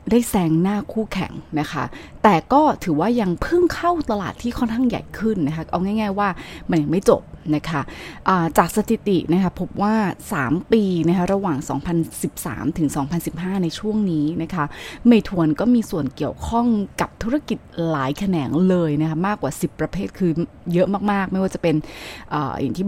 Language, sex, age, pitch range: Thai, female, 20-39, 165-220 Hz